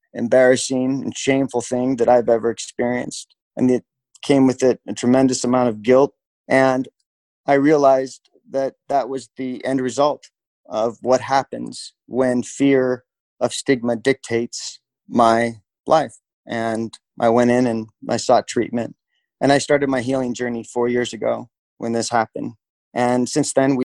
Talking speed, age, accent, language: 150 wpm, 30-49, American, English